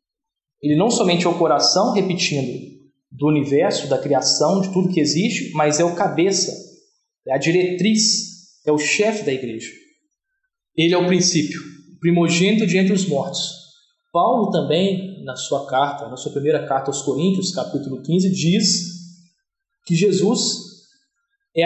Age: 20-39